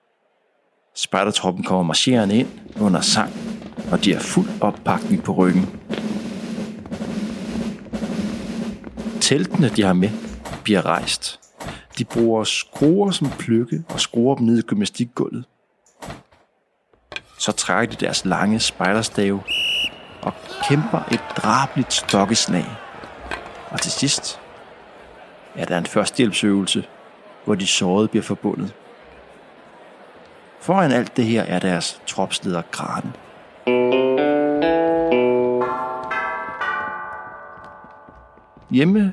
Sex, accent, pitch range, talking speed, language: male, native, 105-165 Hz, 95 wpm, Danish